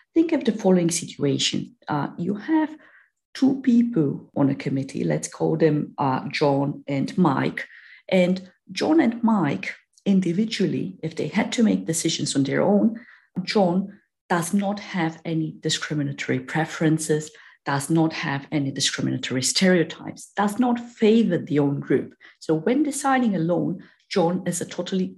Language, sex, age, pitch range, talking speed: English, female, 50-69, 155-220 Hz, 145 wpm